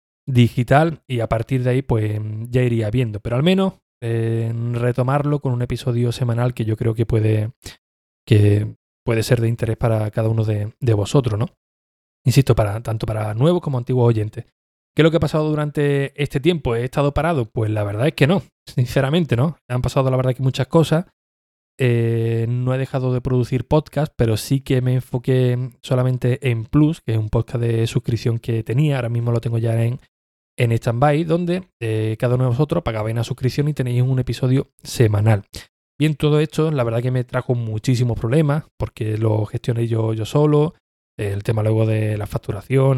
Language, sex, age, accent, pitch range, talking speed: Spanish, male, 20-39, Spanish, 110-135 Hz, 195 wpm